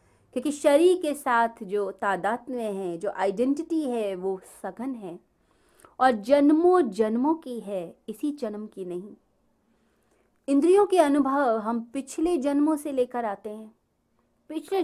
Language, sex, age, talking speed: Hindi, female, 30-49, 140 wpm